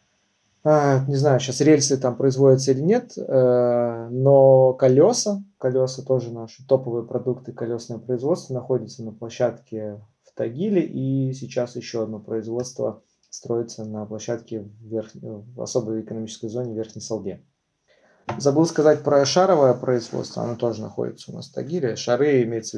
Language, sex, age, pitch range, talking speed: Russian, male, 20-39, 110-130 Hz, 135 wpm